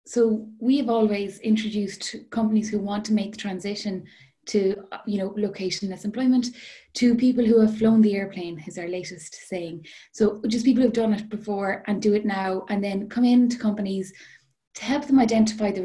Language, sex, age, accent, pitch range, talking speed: English, female, 20-39, Irish, 195-220 Hz, 180 wpm